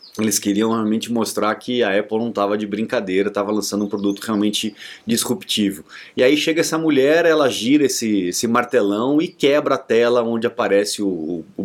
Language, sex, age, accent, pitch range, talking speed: Portuguese, male, 30-49, Brazilian, 105-160 Hz, 180 wpm